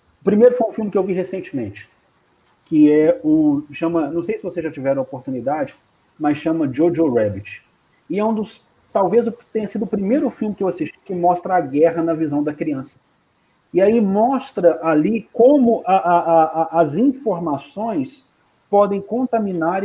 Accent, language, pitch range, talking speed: Brazilian, Portuguese, 165-230 Hz, 175 wpm